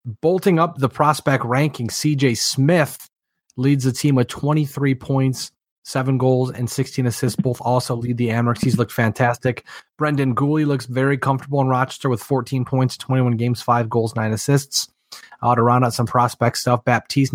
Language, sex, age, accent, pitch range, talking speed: English, male, 30-49, American, 115-135 Hz, 175 wpm